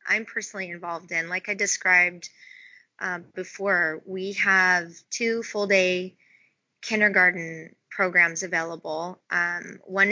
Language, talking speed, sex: English, 115 wpm, female